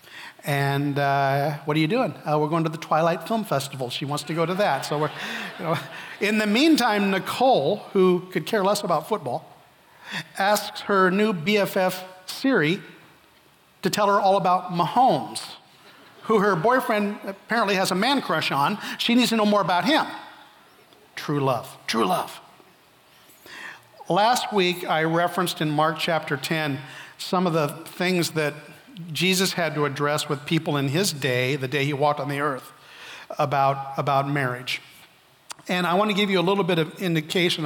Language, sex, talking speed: English, male, 165 wpm